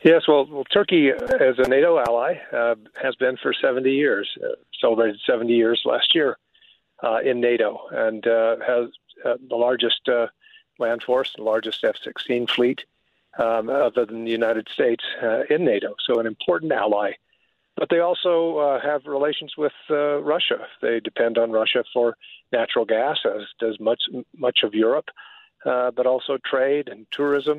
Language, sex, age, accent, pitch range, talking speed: English, male, 50-69, American, 115-145 Hz, 170 wpm